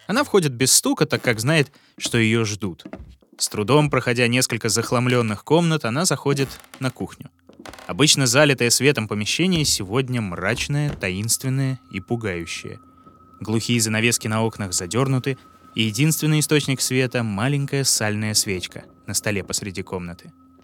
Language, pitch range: Russian, 100-140 Hz